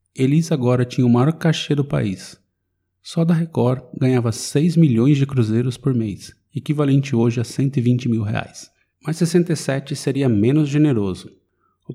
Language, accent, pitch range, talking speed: Portuguese, Brazilian, 115-155 Hz, 150 wpm